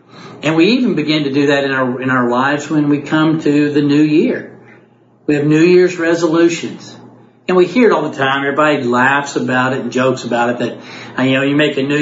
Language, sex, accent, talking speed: English, male, American, 230 wpm